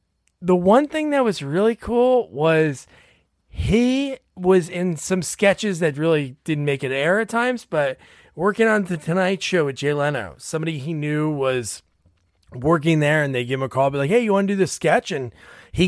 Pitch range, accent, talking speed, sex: 135-195 Hz, American, 200 wpm, male